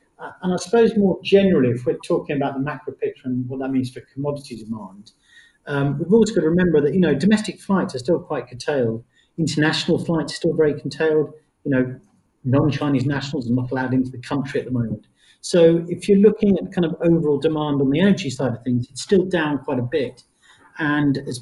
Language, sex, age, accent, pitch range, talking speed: English, male, 40-59, British, 125-160 Hz, 220 wpm